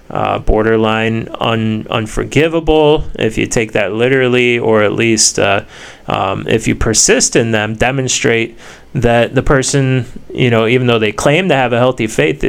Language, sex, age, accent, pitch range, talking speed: English, male, 20-39, American, 105-120 Hz, 170 wpm